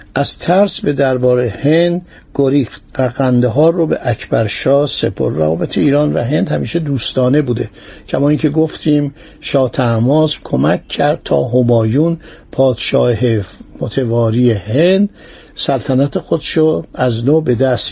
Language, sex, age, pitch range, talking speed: Persian, male, 60-79, 125-155 Hz, 125 wpm